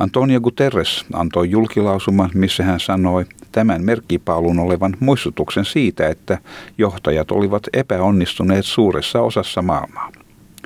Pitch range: 85-105 Hz